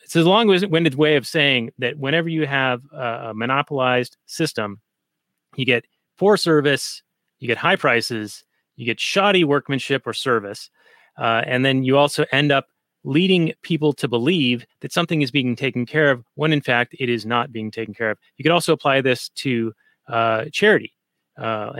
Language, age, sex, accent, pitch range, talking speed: English, 30-49, male, American, 115-145 Hz, 175 wpm